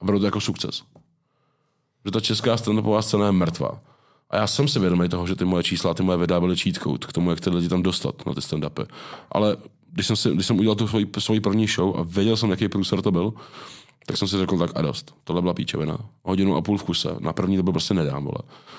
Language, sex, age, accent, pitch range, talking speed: Czech, male, 20-39, native, 90-105 Hz, 240 wpm